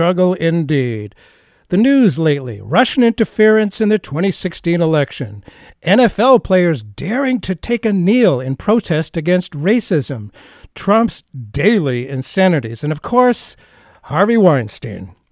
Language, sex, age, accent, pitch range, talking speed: English, male, 60-79, American, 145-205 Hz, 120 wpm